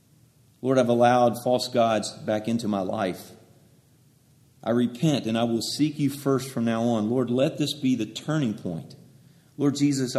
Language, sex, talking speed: English, male, 170 wpm